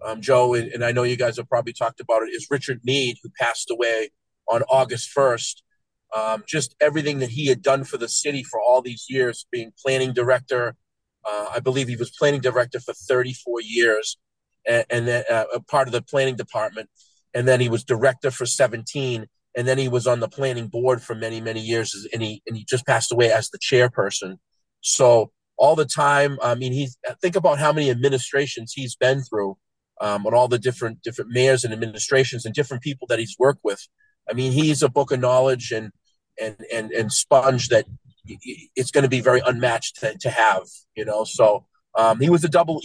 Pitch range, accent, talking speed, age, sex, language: 120-140 Hz, American, 205 wpm, 40-59, male, English